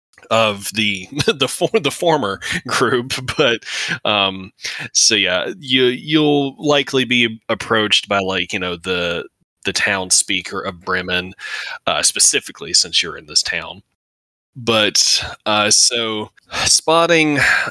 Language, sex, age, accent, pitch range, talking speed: English, male, 20-39, American, 95-120 Hz, 125 wpm